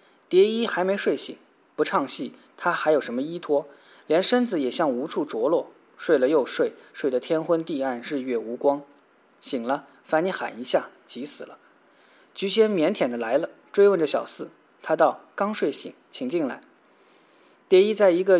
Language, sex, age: Chinese, male, 20-39